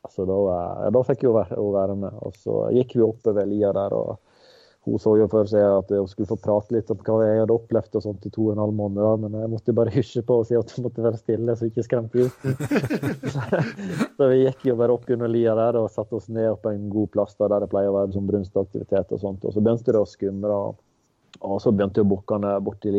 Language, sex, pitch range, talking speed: English, male, 100-115 Hz, 265 wpm